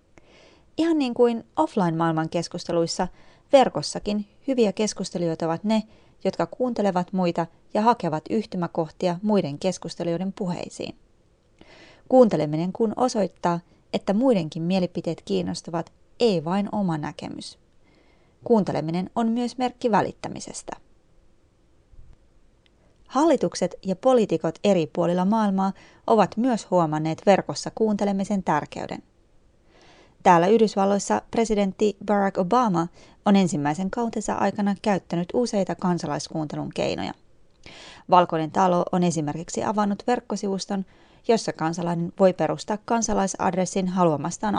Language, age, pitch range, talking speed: Finnish, 30-49, 170-215 Hz, 95 wpm